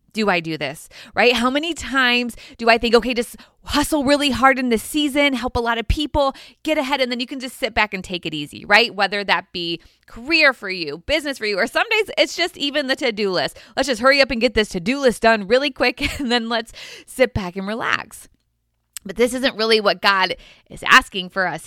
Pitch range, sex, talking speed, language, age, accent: 200-275 Hz, female, 235 wpm, English, 20-39, American